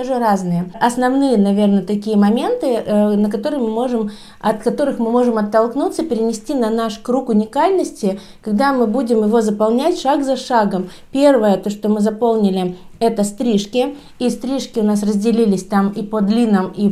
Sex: female